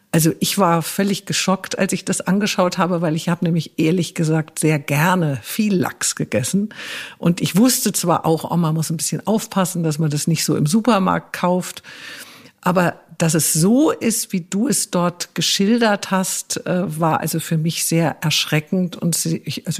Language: German